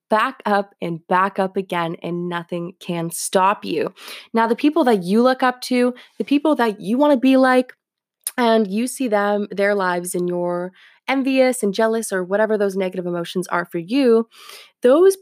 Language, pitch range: English, 185-250 Hz